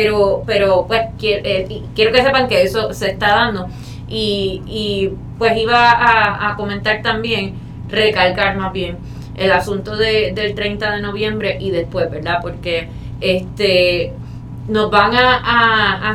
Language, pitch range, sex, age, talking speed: Spanish, 185-235 Hz, female, 20-39, 150 wpm